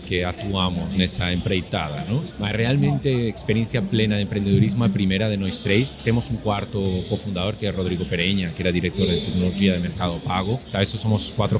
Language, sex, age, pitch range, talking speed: Portuguese, male, 30-49, 95-115 Hz, 190 wpm